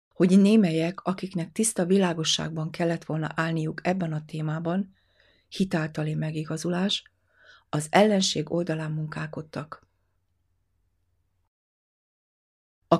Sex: female